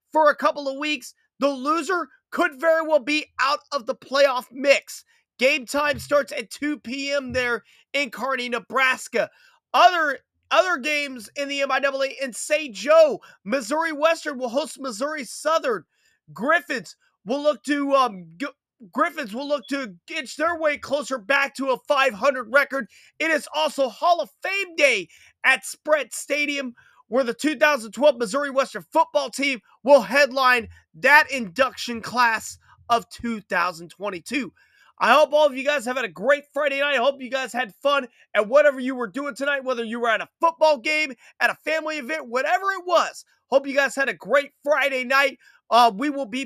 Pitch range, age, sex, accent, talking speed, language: 255-300 Hz, 30-49, male, American, 175 wpm, English